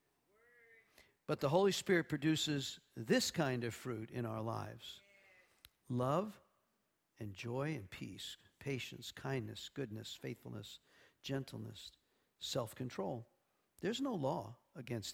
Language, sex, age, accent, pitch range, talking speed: English, male, 50-69, American, 135-225 Hz, 110 wpm